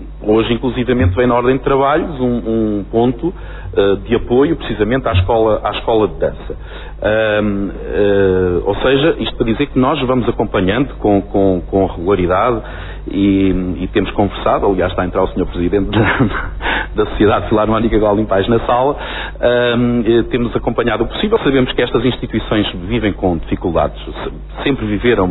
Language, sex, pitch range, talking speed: Portuguese, male, 90-110 Hz, 145 wpm